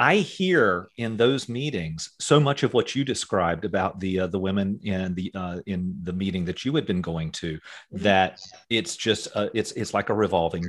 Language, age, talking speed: English, 40-59, 210 wpm